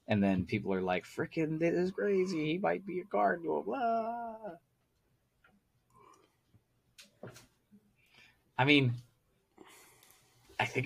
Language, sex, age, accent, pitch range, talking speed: English, male, 20-39, American, 90-120 Hz, 110 wpm